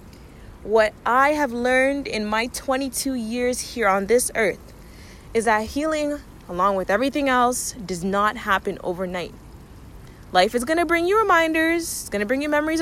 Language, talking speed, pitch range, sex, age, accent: English, 170 wpm, 190-255 Hz, female, 20-39, American